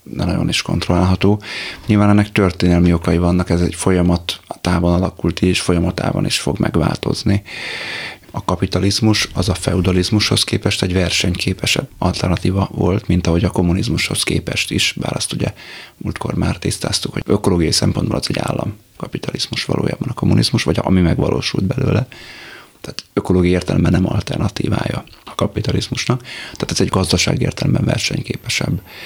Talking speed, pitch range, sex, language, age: 140 wpm, 85-105 Hz, male, Hungarian, 30-49